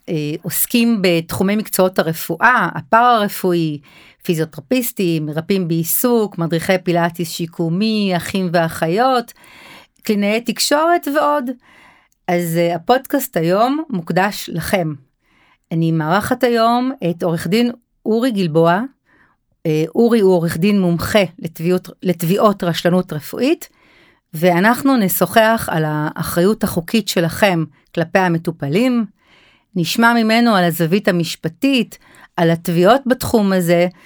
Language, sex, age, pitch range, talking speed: Hebrew, female, 40-59, 170-230 Hz, 100 wpm